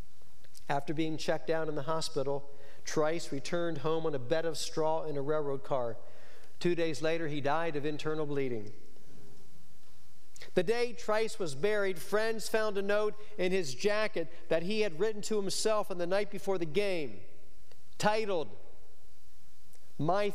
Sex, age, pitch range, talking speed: male, 50-69, 150-205 Hz, 155 wpm